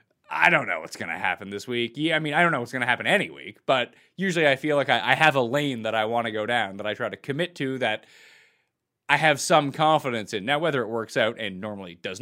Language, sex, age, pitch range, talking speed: English, male, 30-49, 130-190 Hz, 280 wpm